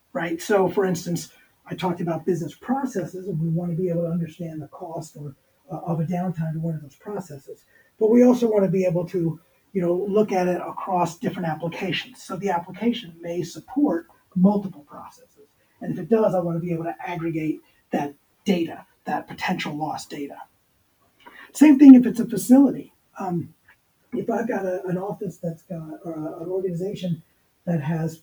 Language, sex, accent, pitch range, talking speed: English, male, American, 165-200 Hz, 190 wpm